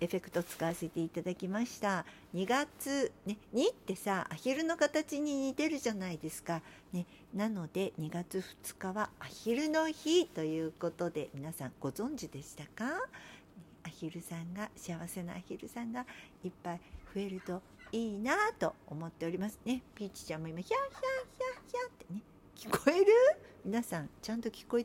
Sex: female